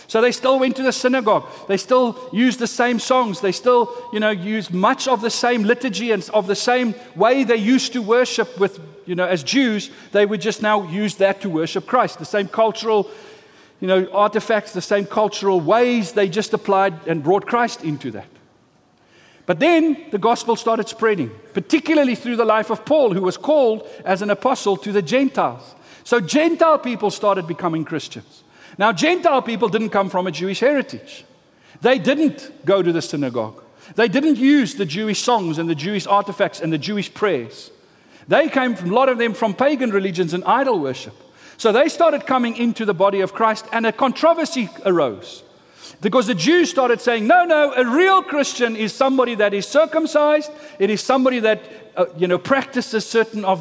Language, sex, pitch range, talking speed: English, male, 195-255 Hz, 190 wpm